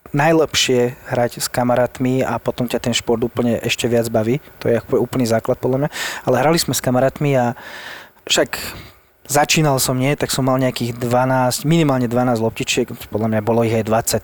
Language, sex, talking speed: Slovak, male, 180 wpm